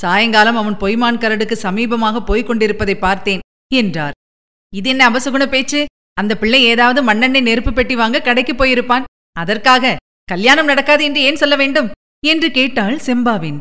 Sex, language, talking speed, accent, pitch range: female, Tamil, 130 wpm, native, 195-245 Hz